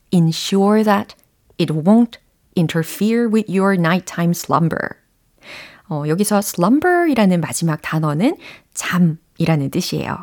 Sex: female